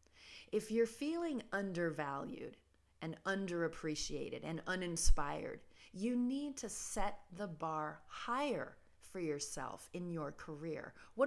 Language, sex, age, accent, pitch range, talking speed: English, female, 30-49, American, 165-235 Hz, 110 wpm